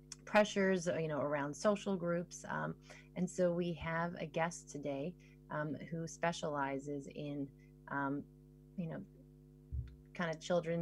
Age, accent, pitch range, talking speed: 30-49, American, 140-160 Hz, 135 wpm